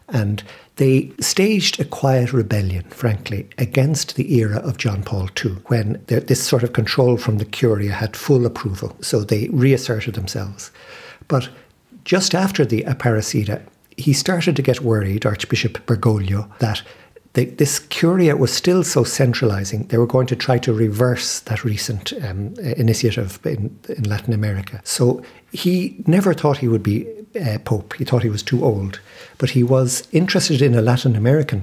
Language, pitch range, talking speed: English, 110-135 Hz, 165 wpm